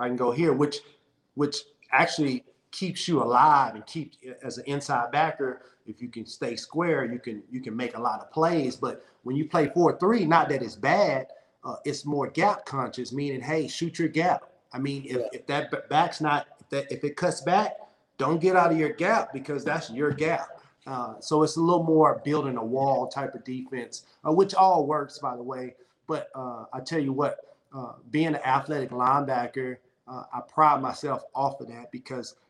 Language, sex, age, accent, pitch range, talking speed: English, male, 30-49, American, 120-150 Hz, 205 wpm